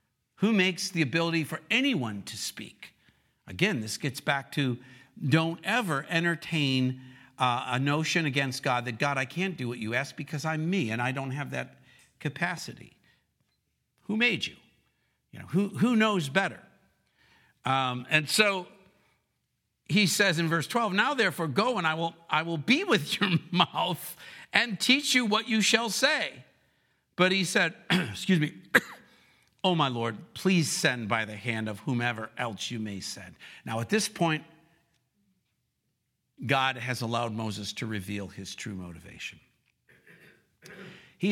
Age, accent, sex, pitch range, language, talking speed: 50-69, American, male, 120-175 Hz, English, 155 wpm